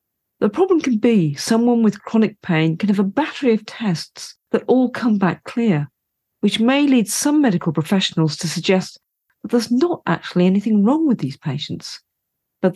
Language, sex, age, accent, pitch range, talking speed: English, female, 40-59, British, 170-235 Hz, 175 wpm